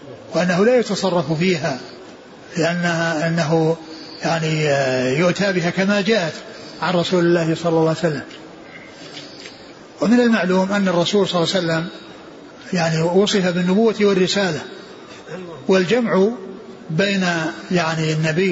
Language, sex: Arabic, male